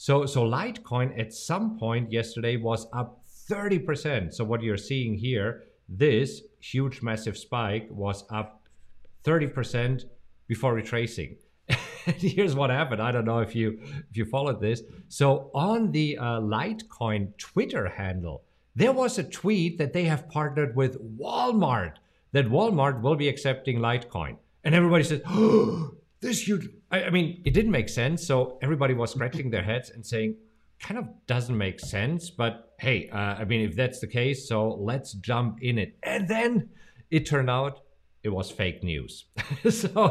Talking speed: 160 wpm